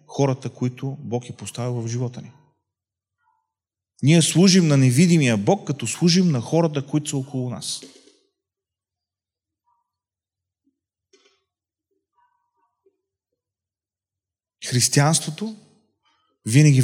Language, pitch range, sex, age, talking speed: Bulgarian, 125-175 Hz, male, 30-49, 80 wpm